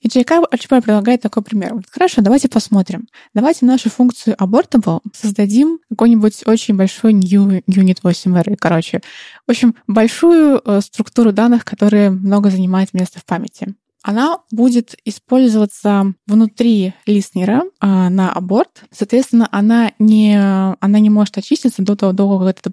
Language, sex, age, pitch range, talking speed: Russian, female, 20-39, 200-245 Hz, 135 wpm